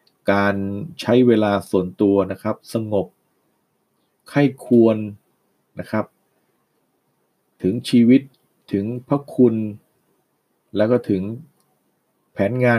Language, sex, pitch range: Thai, male, 100-125 Hz